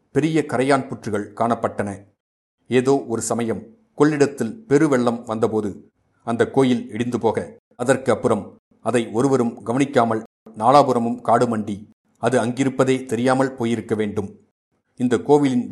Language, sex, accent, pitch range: Tamil, male, native, 110-130 Hz